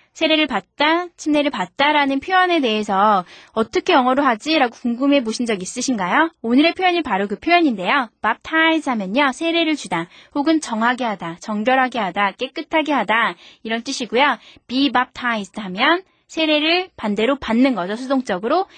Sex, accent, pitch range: female, native, 210-290 Hz